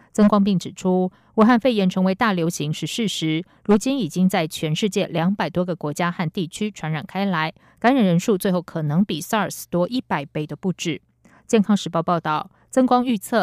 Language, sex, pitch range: German, female, 165-210 Hz